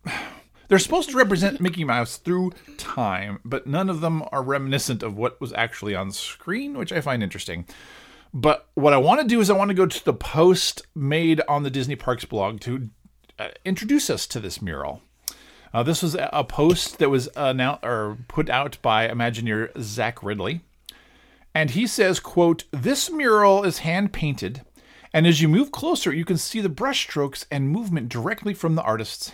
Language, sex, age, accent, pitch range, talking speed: English, male, 40-59, American, 120-190 Hz, 190 wpm